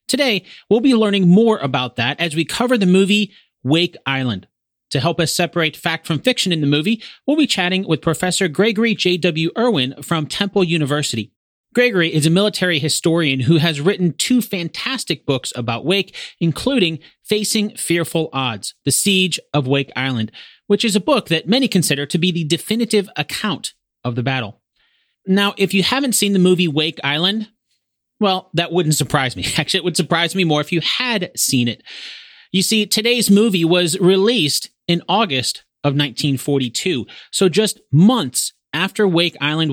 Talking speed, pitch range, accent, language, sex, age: 170 wpm, 145-200 Hz, American, English, male, 30-49